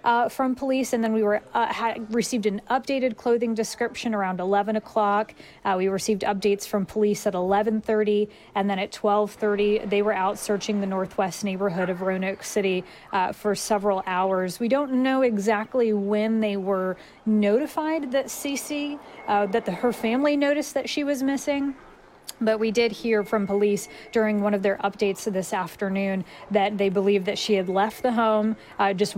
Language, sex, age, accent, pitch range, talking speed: English, female, 30-49, American, 195-235 Hz, 180 wpm